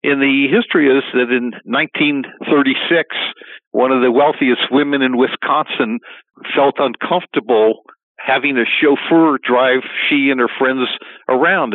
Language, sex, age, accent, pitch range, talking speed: English, male, 60-79, American, 125-150 Hz, 130 wpm